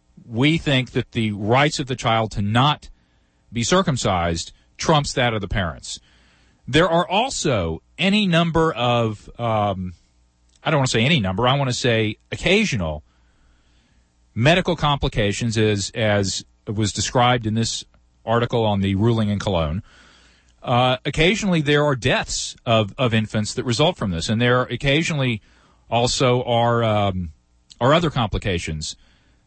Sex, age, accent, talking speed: male, 40-59, American, 145 wpm